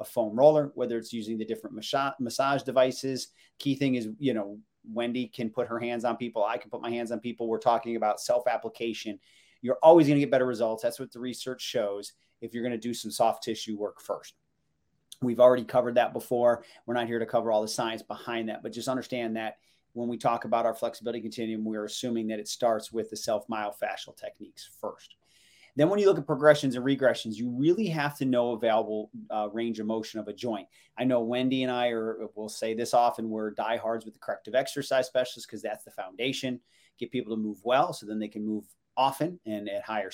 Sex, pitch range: male, 115-135 Hz